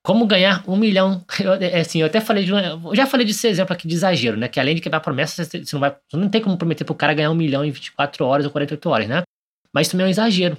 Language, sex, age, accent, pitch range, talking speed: Portuguese, male, 20-39, Brazilian, 145-190 Hz, 295 wpm